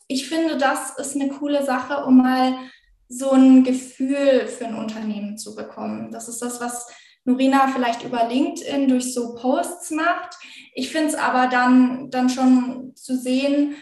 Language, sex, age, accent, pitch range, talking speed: German, female, 10-29, German, 245-275 Hz, 165 wpm